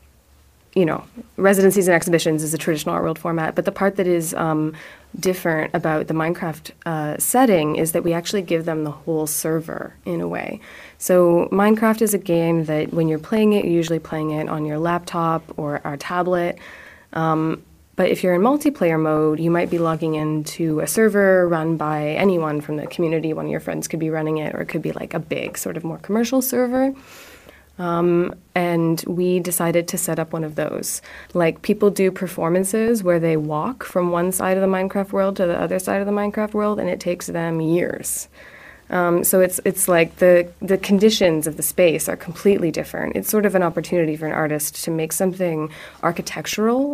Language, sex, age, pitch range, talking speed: German, female, 20-39, 160-195 Hz, 200 wpm